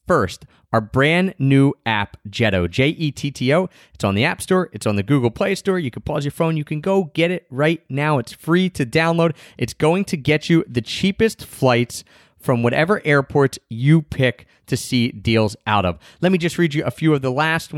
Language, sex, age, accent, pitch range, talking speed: English, male, 30-49, American, 120-170 Hz, 210 wpm